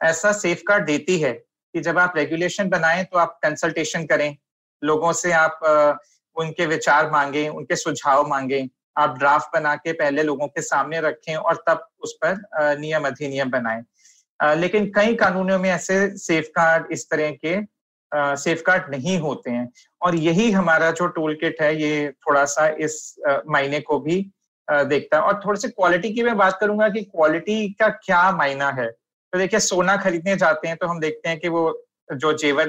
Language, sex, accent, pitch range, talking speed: Hindi, male, native, 150-185 Hz, 175 wpm